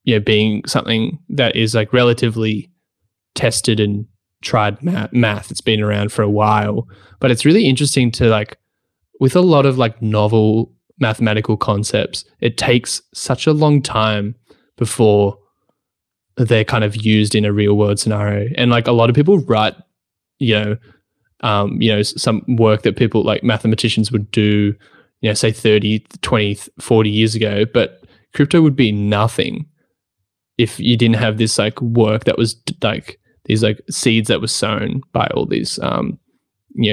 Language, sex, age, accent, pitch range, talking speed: English, male, 10-29, Australian, 105-120 Hz, 165 wpm